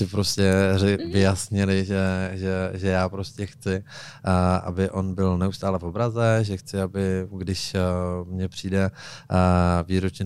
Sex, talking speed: male, 125 wpm